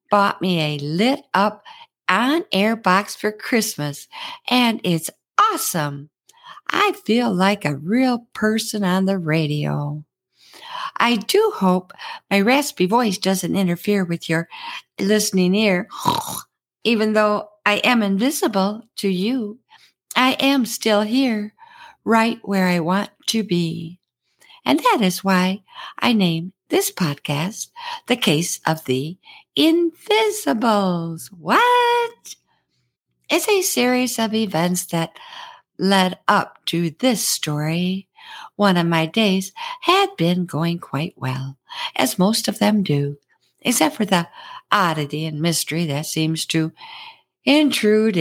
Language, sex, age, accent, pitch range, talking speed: English, female, 60-79, American, 170-260 Hz, 120 wpm